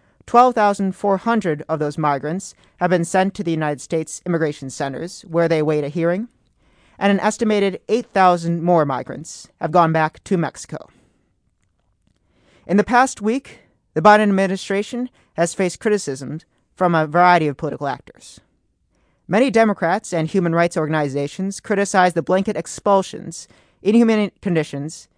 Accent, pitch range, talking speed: American, 155-195 Hz, 135 wpm